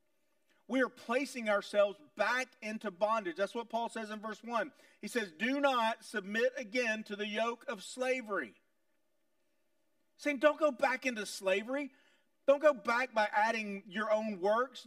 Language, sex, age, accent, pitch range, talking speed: English, male, 40-59, American, 215-300 Hz, 155 wpm